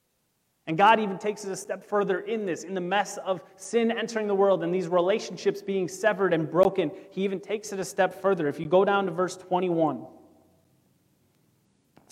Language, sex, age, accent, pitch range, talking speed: English, male, 30-49, American, 140-180 Hz, 200 wpm